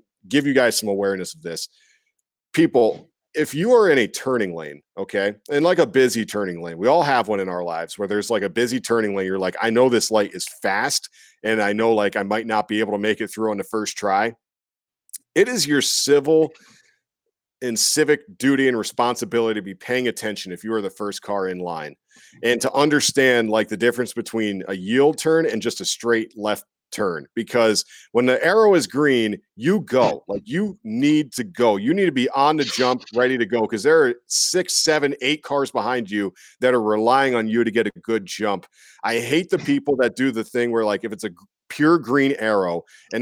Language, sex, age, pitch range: English, male, 40-59, 110-145 Hz